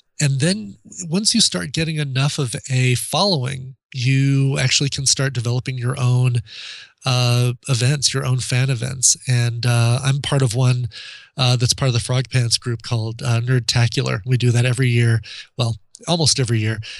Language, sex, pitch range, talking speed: English, male, 120-140 Hz, 175 wpm